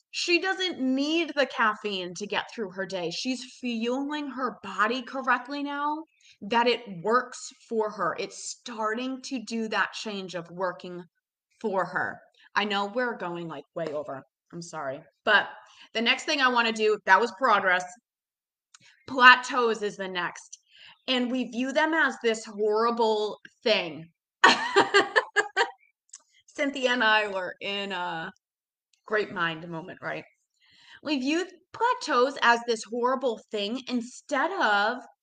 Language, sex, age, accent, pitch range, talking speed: English, female, 20-39, American, 210-285 Hz, 140 wpm